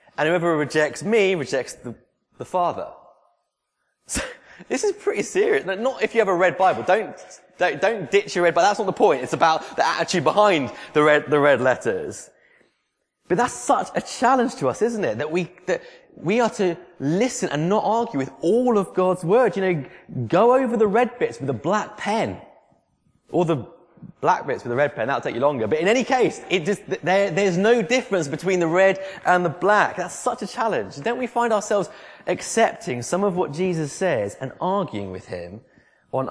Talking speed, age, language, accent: 205 wpm, 20-39, English, British